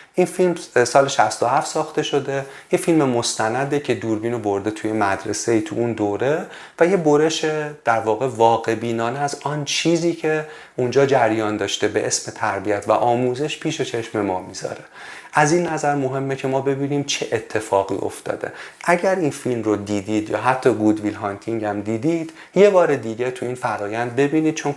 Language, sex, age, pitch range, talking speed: Persian, male, 30-49, 110-140 Hz, 170 wpm